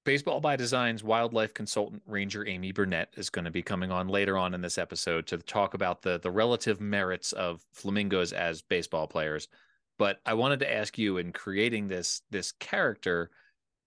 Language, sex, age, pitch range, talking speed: English, male, 30-49, 95-115 Hz, 180 wpm